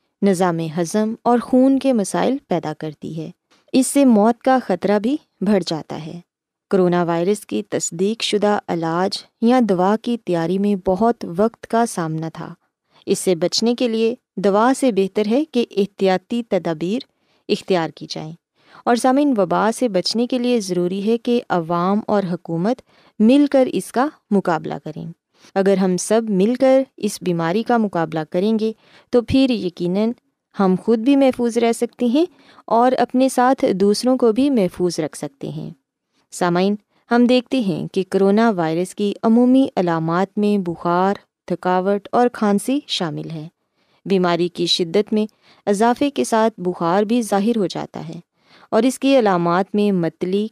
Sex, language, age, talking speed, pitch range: female, Urdu, 20-39, 160 wpm, 180-240 Hz